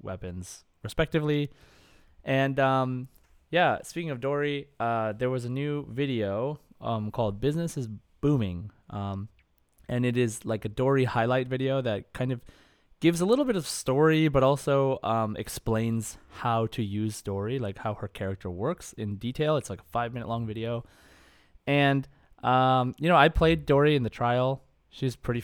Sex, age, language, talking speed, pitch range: male, 20-39, English, 165 wpm, 105-135 Hz